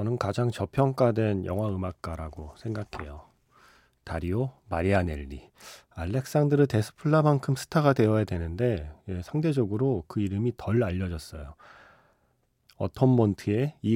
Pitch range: 95-130 Hz